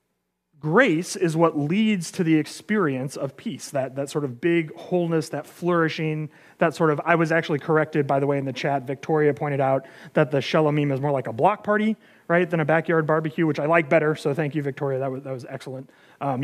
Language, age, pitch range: English, 30-49, 145-190 Hz